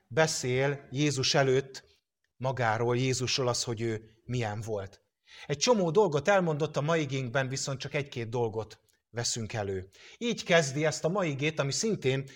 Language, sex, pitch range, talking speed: English, male, 125-165 Hz, 140 wpm